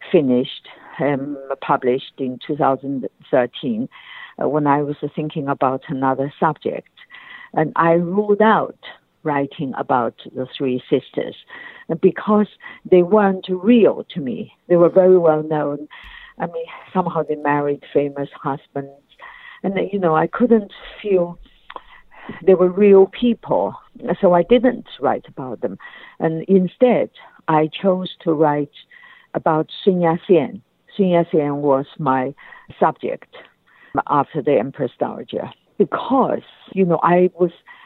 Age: 50-69